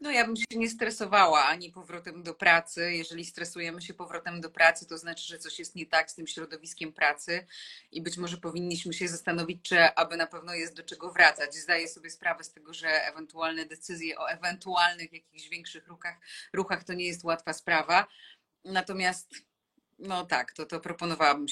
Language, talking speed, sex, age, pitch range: Polish, 185 wpm, female, 30-49, 160-185 Hz